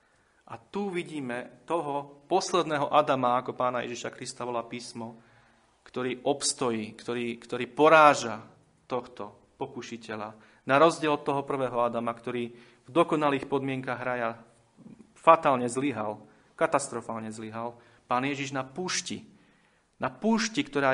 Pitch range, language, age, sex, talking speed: 120-140 Hz, Slovak, 30-49, male, 115 wpm